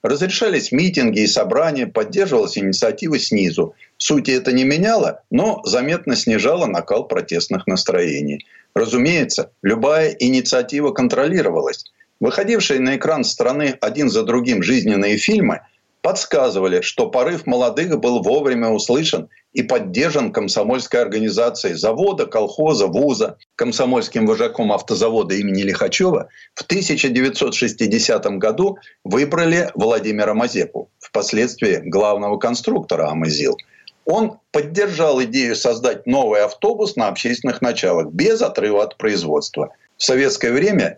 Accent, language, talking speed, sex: native, Russian, 110 wpm, male